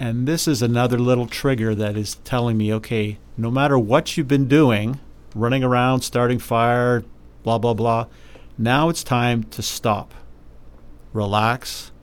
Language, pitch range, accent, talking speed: English, 105-125 Hz, American, 150 wpm